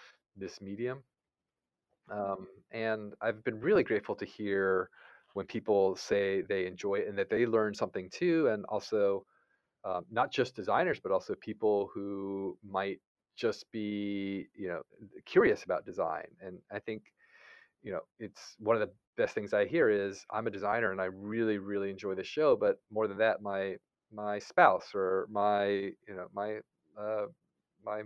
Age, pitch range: 30-49, 100-115 Hz